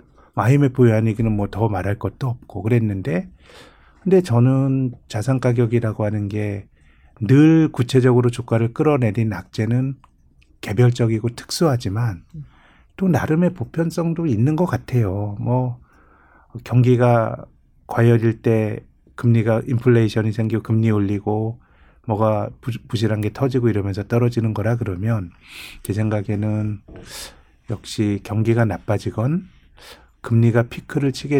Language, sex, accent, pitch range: Korean, male, native, 105-130 Hz